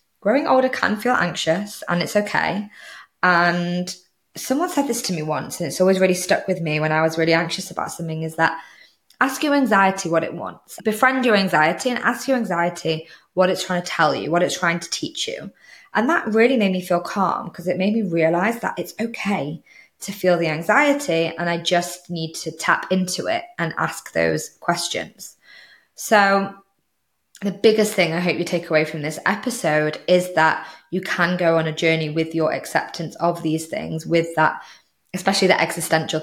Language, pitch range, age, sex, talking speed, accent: English, 165-195 Hz, 20-39, female, 195 wpm, British